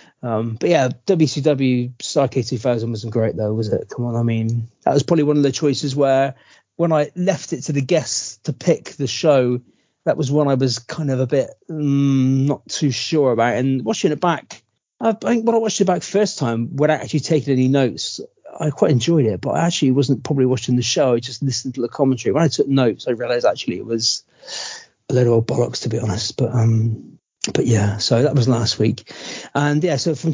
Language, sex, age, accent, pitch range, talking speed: English, male, 40-59, British, 120-150 Hz, 225 wpm